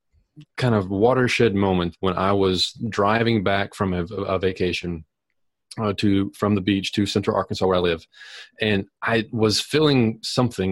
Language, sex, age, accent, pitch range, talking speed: English, male, 30-49, American, 95-110 Hz, 160 wpm